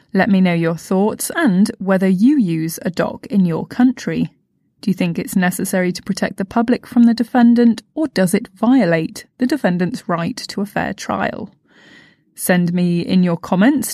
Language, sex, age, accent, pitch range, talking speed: English, female, 20-39, British, 180-240 Hz, 180 wpm